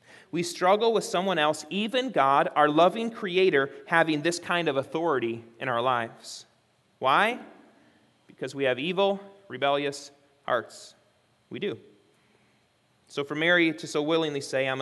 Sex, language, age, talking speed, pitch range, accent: male, English, 30-49, 140 wpm, 130-175 Hz, American